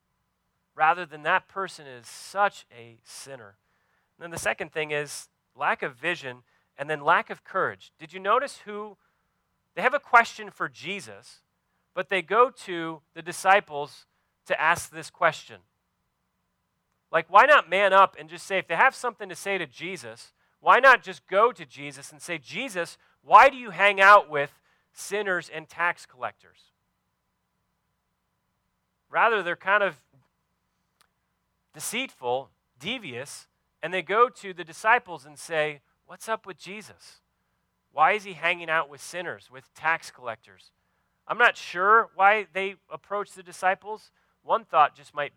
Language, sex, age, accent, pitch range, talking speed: English, male, 40-59, American, 145-195 Hz, 155 wpm